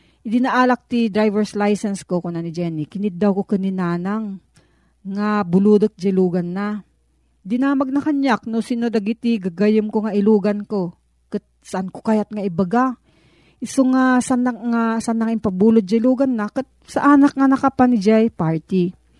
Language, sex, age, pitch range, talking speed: Filipino, female, 40-59, 175-230 Hz, 165 wpm